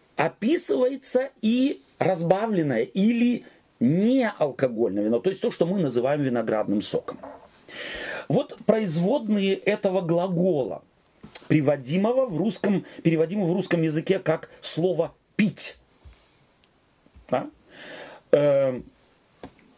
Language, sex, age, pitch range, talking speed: Russian, male, 40-59, 150-210 Hz, 80 wpm